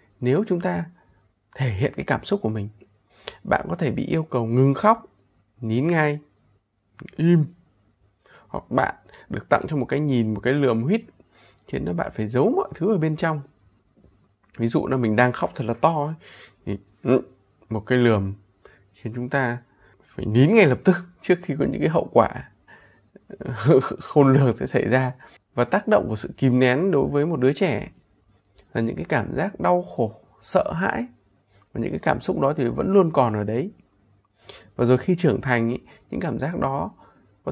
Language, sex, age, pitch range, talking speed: Vietnamese, male, 20-39, 105-155 Hz, 190 wpm